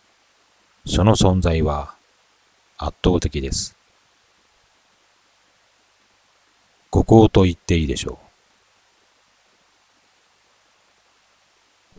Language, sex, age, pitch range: Japanese, male, 40-59, 70-90 Hz